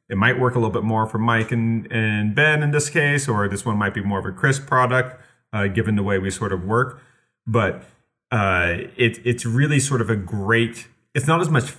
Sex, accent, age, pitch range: male, American, 30-49, 110-135 Hz